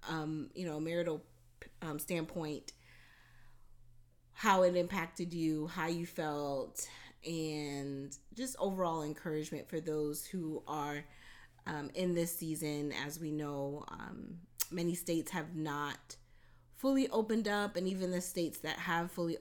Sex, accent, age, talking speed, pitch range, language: female, American, 30-49, 135 wpm, 150-175 Hz, English